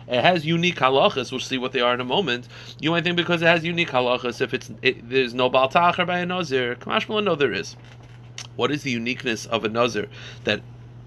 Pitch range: 115-130 Hz